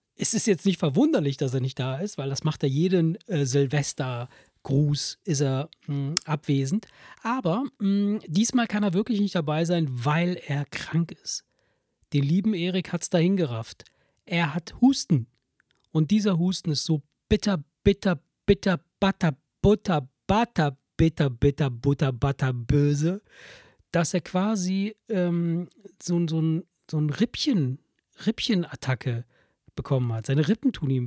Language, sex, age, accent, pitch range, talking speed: German, male, 40-59, German, 140-185 Hz, 150 wpm